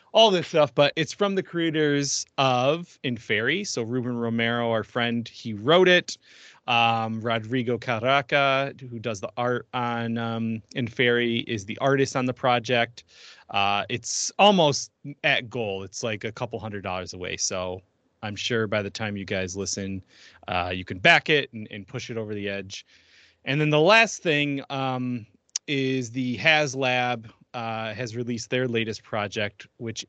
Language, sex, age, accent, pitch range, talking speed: English, male, 30-49, American, 115-145 Hz, 165 wpm